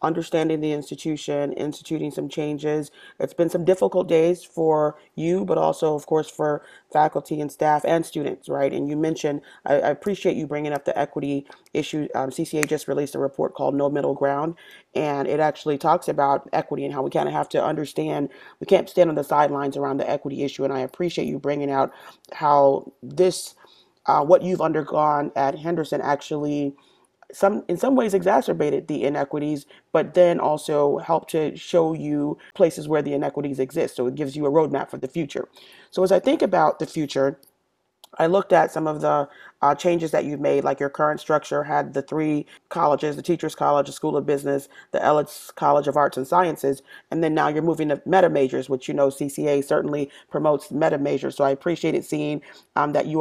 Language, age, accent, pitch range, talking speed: English, 30-49, American, 140-160 Hz, 200 wpm